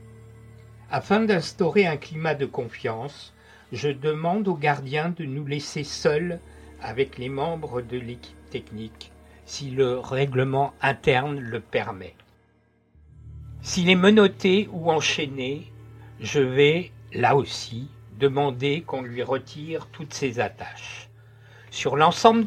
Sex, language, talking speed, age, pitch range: male, French, 120 wpm, 60-79, 115-155 Hz